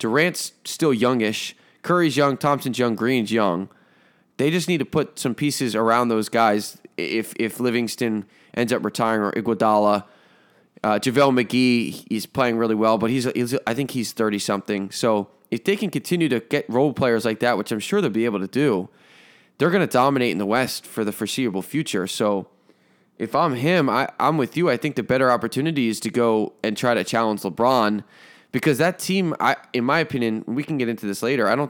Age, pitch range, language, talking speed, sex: 20-39, 110-130 Hz, English, 205 wpm, male